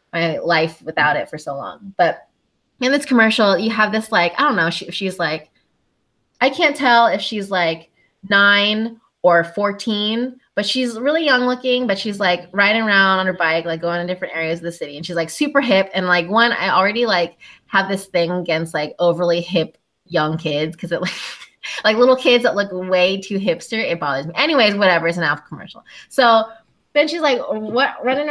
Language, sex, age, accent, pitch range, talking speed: English, female, 20-39, American, 185-255 Hz, 205 wpm